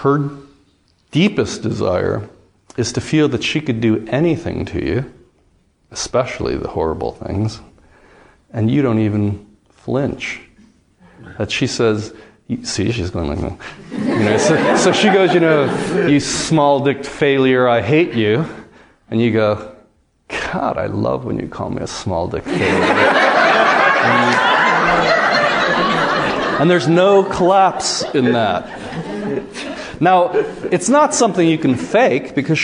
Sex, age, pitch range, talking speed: male, 40-59, 110-155 Hz, 140 wpm